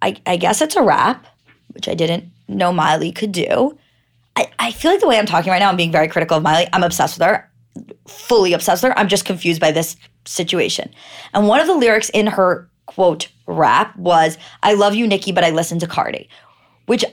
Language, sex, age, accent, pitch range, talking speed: English, female, 20-39, American, 175-220 Hz, 220 wpm